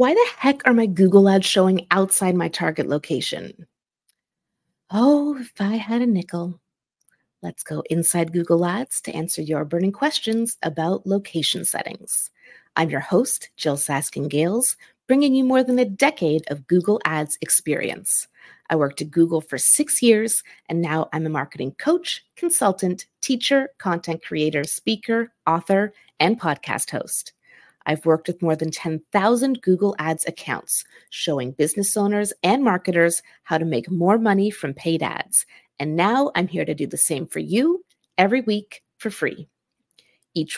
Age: 30-49